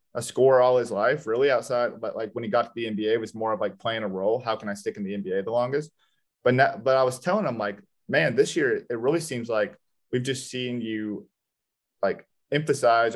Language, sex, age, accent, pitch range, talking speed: English, male, 30-49, American, 115-150 Hz, 240 wpm